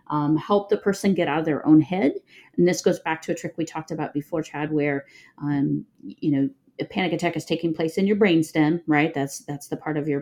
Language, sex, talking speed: English, female, 245 wpm